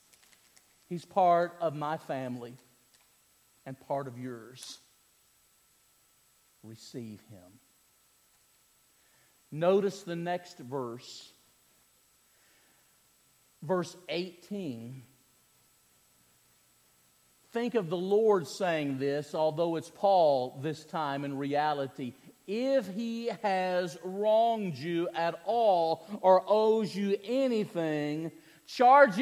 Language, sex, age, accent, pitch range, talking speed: English, male, 50-69, American, 140-235 Hz, 85 wpm